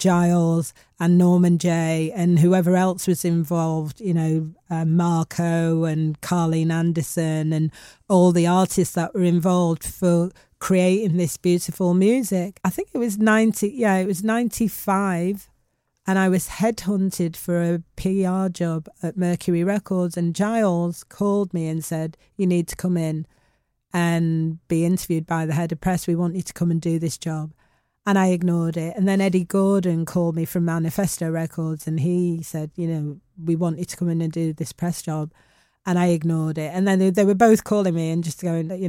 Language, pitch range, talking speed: English, 165-185 Hz, 185 wpm